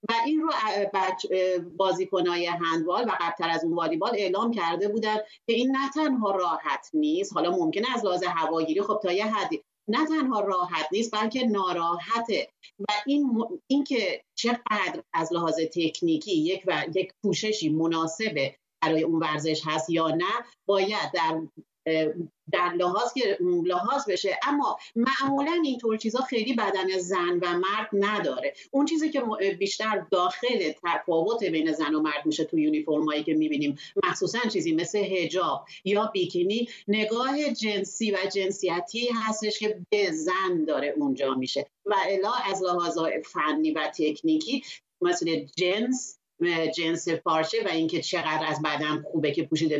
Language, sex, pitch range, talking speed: Persian, female, 160-220 Hz, 150 wpm